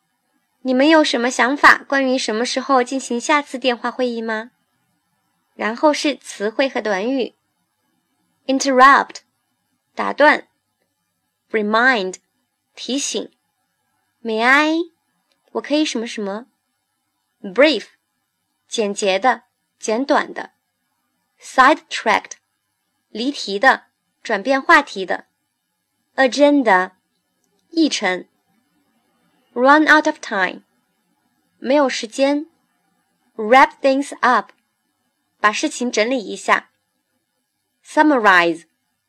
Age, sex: 20-39, male